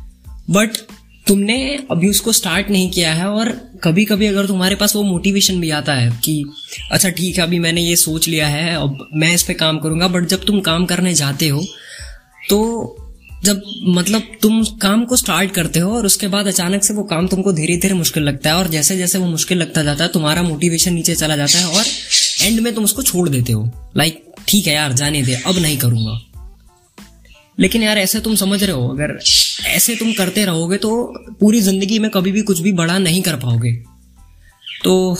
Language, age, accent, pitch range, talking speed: English, 20-39, Indian, 155-200 Hz, 150 wpm